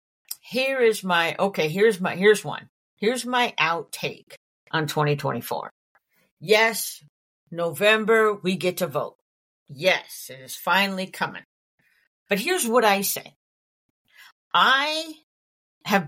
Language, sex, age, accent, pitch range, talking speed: English, female, 50-69, American, 145-210 Hz, 115 wpm